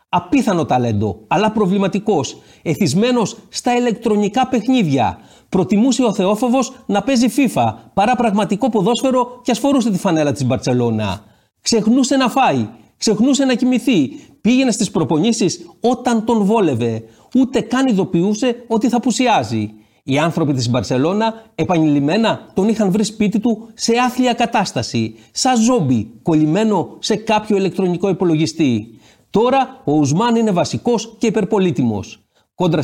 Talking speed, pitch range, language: 125 wpm, 145-235 Hz, Greek